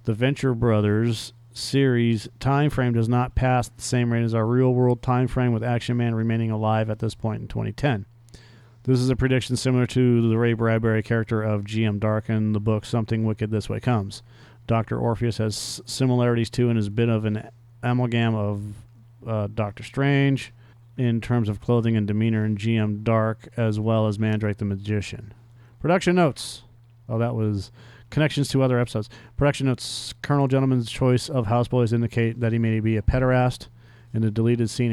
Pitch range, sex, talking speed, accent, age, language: 110-125 Hz, male, 180 wpm, American, 40-59, English